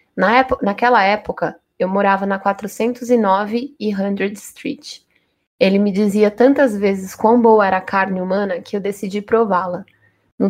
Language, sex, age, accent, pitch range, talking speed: Portuguese, female, 20-39, Brazilian, 195-225 Hz, 155 wpm